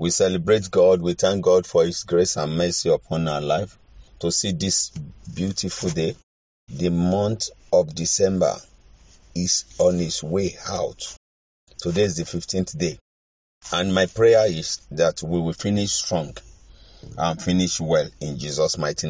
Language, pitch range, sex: English, 85-105 Hz, male